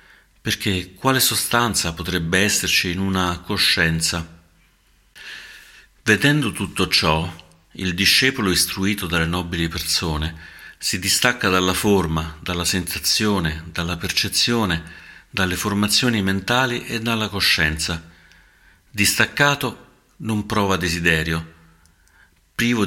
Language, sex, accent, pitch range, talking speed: Italian, male, native, 80-105 Hz, 95 wpm